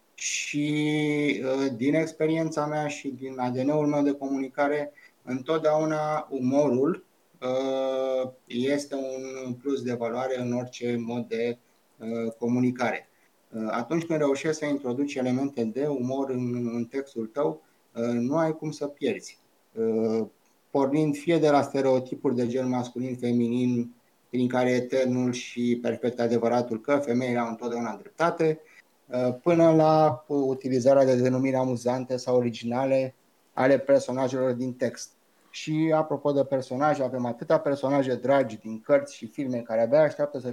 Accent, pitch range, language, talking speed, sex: native, 120-145 Hz, Romanian, 125 wpm, male